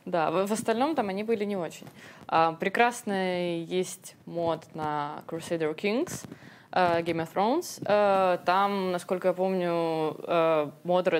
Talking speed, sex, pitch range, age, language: 120 wpm, female, 155-195 Hz, 20-39, Russian